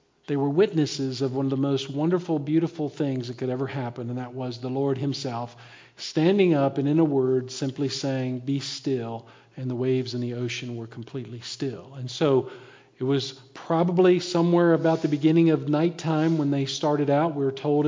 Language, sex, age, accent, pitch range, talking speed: English, male, 50-69, American, 135-165 Hz, 195 wpm